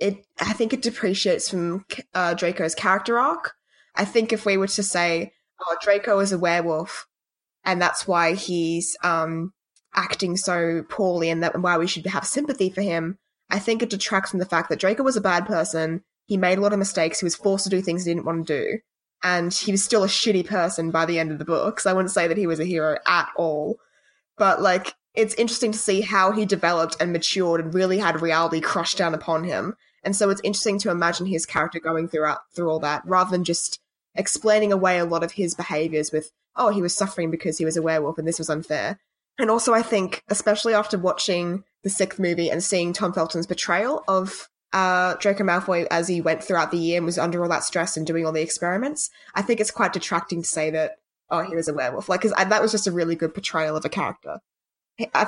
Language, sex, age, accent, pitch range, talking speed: English, female, 20-39, Australian, 165-200 Hz, 230 wpm